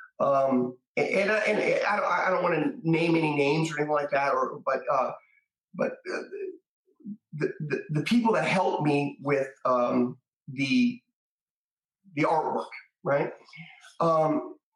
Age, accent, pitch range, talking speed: 30-49, American, 130-210 Hz, 140 wpm